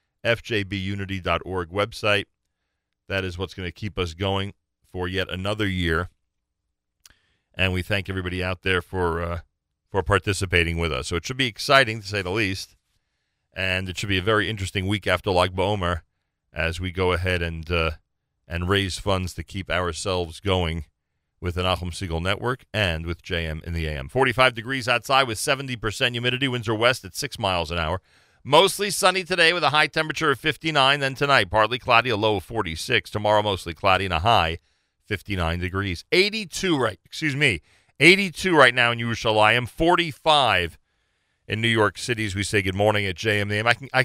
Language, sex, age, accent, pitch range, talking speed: English, male, 40-59, American, 85-115 Hz, 180 wpm